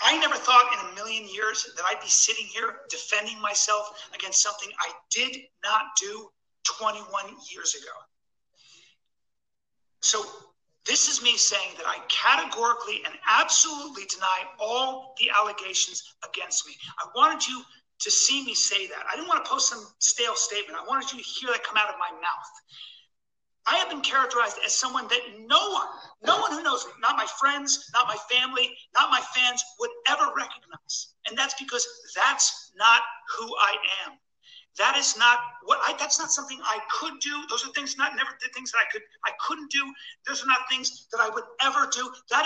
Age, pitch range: 30-49, 215-285 Hz